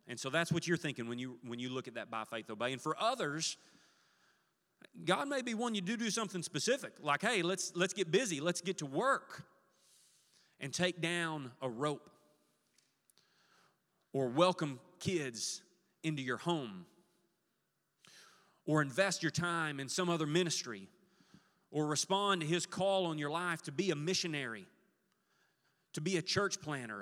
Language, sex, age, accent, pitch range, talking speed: English, male, 30-49, American, 130-180 Hz, 165 wpm